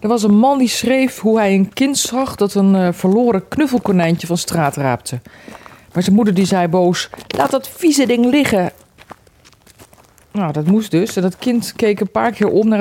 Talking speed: 195 wpm